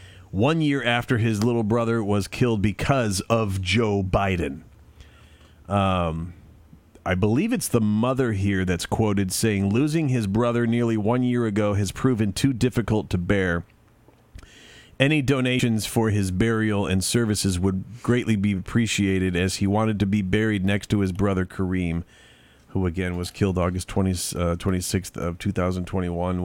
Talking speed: 145 wpm